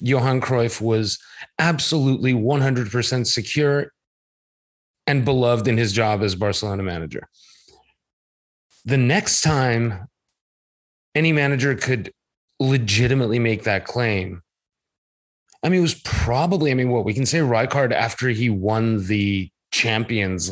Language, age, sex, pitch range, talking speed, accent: English, 30-49, male, 110-140 Hz, 120 wpm, American